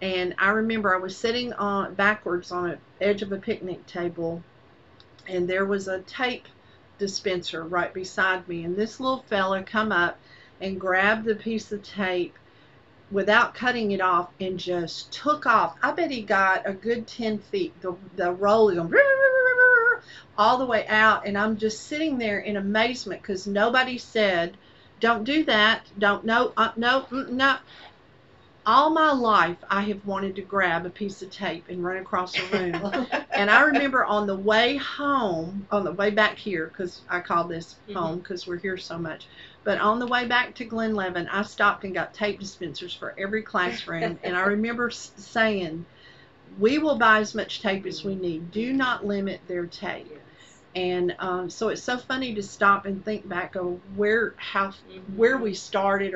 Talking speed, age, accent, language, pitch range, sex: 180 wpm, 50-69, American, English, 185-225 Hz, female